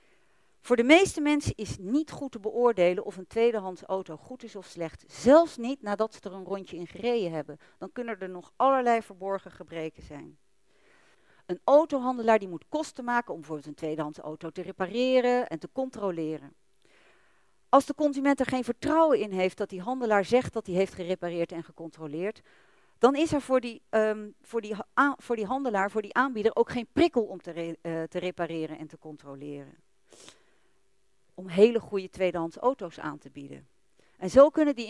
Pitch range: 175-240 Hz